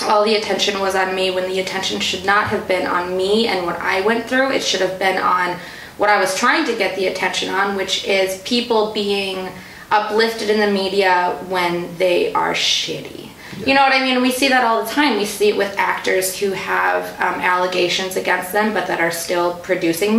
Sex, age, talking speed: female, 20-39, 215 wpm